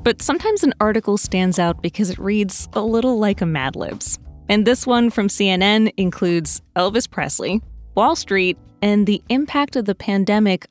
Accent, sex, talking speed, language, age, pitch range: American, female, 175 wpm, English, 20-39, 180-240 Hz